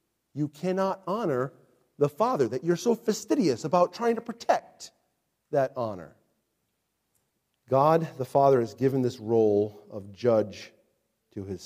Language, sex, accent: English, male, American